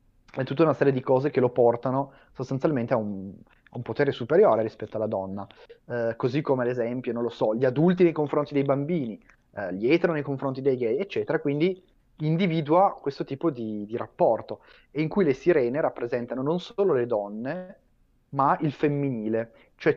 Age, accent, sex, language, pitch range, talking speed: 30-49, native, male, Italian, 110-145 Hz, 185 wpm